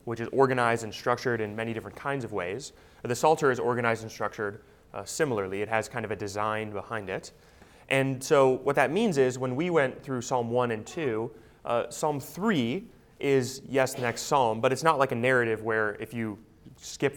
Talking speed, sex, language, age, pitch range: 205 wpm, male, English, 30-49, 110-135 Hz